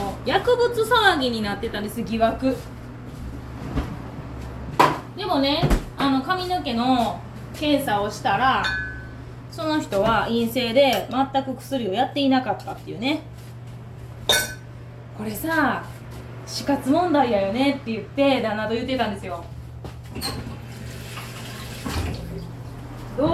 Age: 20-39